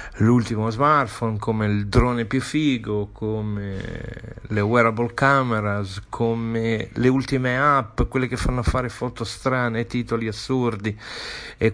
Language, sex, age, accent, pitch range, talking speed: Italian, male, 50-69, native, 110-135 Hz, 125 wpm